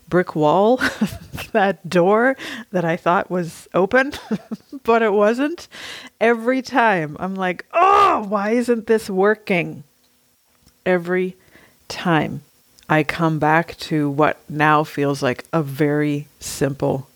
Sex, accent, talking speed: female, American, 120 wpm